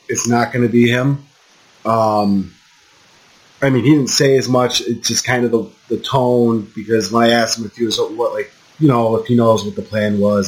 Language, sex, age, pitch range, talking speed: English, male, 30-49, 105-125 Hz, 230 wpm